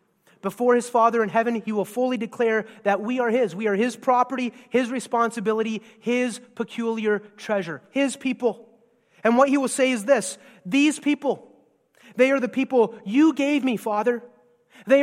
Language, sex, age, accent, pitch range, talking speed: English, male, 30-49, American, 225-280 Hz, 170 wpm